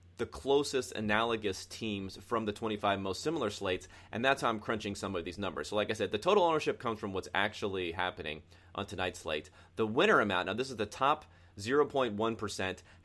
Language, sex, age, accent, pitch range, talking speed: English, male, 30-49, American, 95-115 Hz, 200 wpm